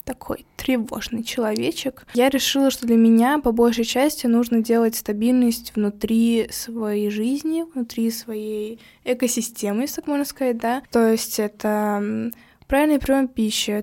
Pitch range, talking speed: 220-245 Hz, 135 wpm